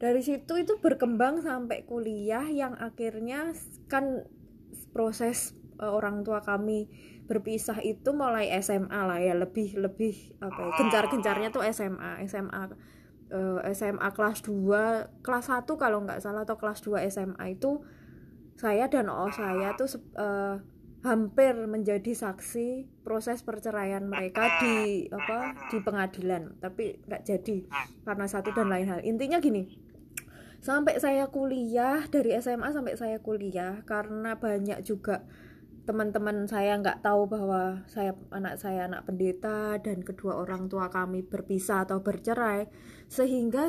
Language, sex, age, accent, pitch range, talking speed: Indonesian, female, 20-39, native, 200-250 Hz, 135 wpm